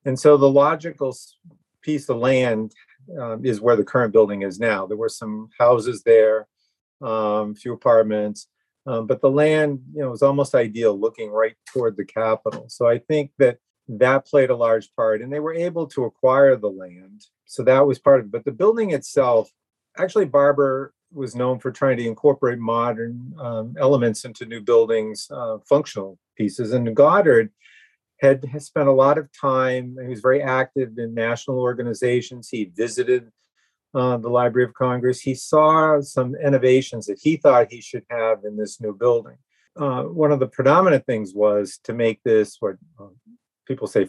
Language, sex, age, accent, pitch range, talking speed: English, male, 40-59, American, 115-145 Hz, 180 wpm